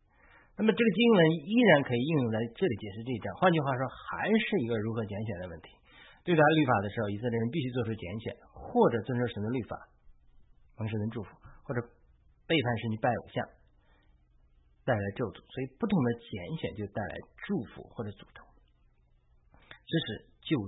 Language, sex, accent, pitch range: Chinese, male, native, 100-150 Hz